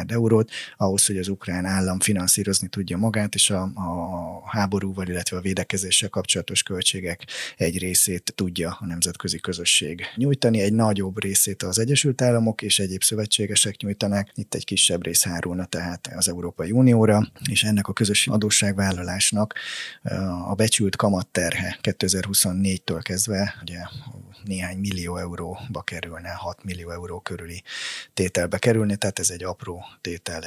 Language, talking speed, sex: Hungarian, 140 wpm, male